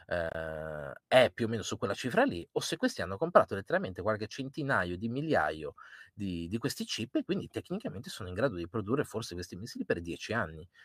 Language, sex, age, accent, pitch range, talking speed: Italian, male, 30-49, native, 90-115 Hz, 200 wpm